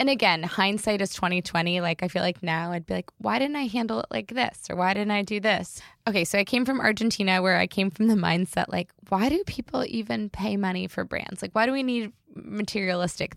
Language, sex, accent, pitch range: English, female, American, 175-210 Hz